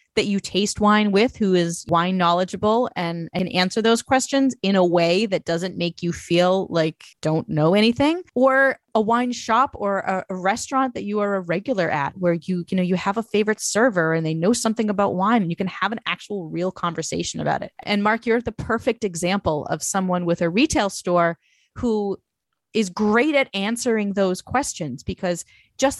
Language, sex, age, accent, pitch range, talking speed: English, female, 30-49, American, 180-235 Hz, 200 wpm